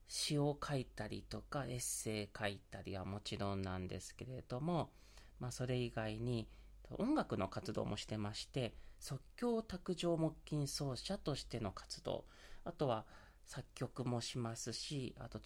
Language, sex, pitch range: Japanese, male, 110-160 Hz